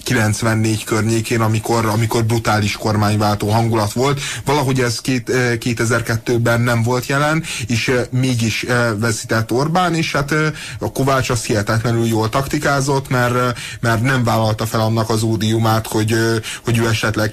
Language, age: Hungarian, 30-49